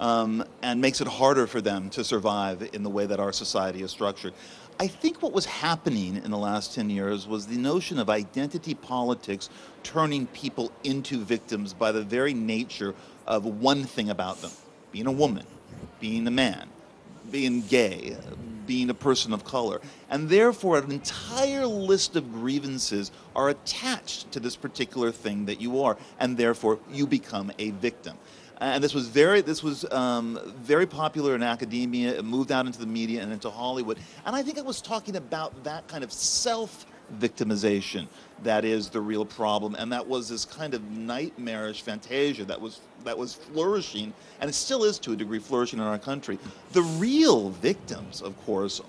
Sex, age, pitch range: male, 40-59, 110-145 Hz